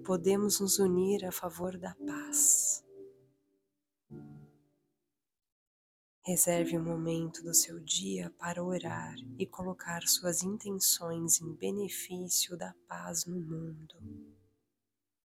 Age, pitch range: 20-39, 130-180 Hz